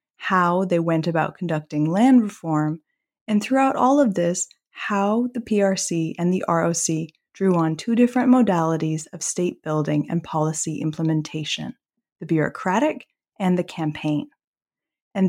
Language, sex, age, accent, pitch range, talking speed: English, female, 20-39, American, 165-215 Hz, 135 wpm